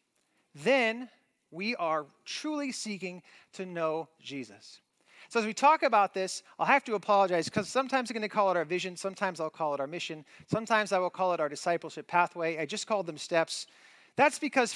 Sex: male